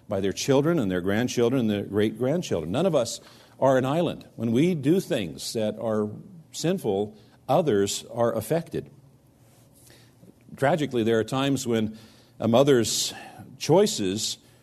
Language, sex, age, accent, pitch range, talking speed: English, male, 50-69, American, 115-150 Hz, 135 wpm